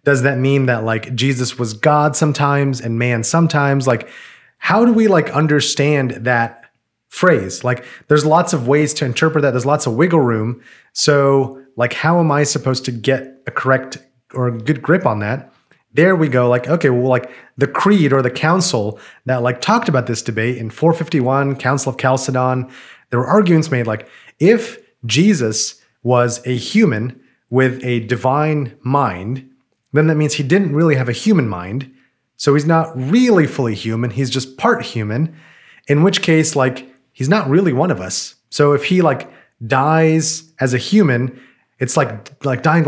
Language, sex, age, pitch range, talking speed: English, male, 30-49, 125-160 Hz, 180 wpm